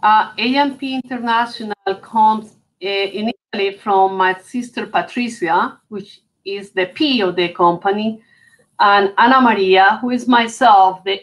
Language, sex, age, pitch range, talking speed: English, female, 50-69, 190-235 Hz, 130 wpm